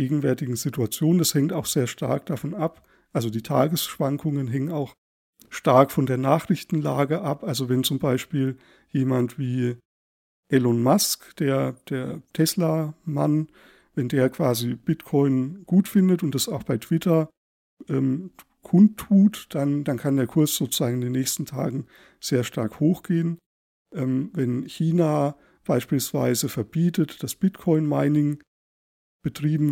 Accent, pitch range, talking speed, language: German, 130-160 Hz, 130 wpm, German